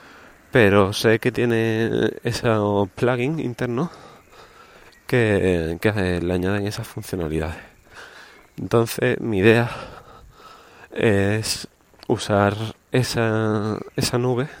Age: 20-39